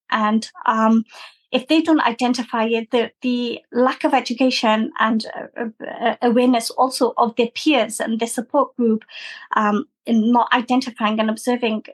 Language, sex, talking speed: English, female, 145 wpm